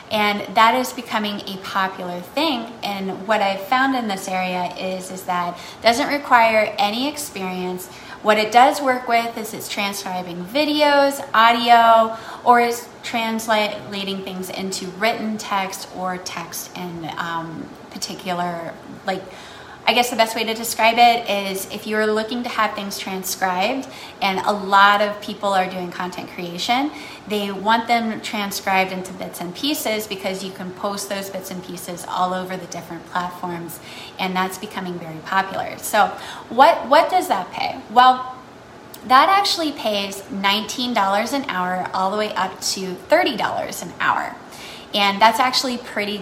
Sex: female